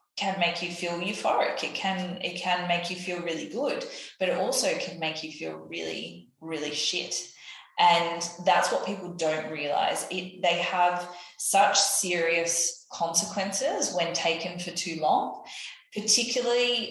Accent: Australian